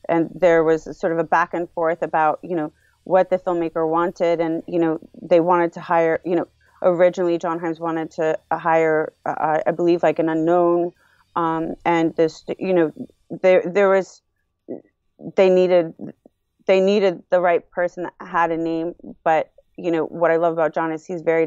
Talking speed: 185 wpm